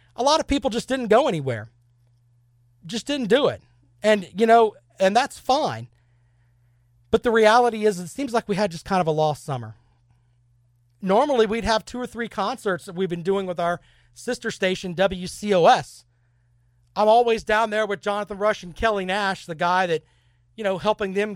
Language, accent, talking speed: English, American, 185 wpm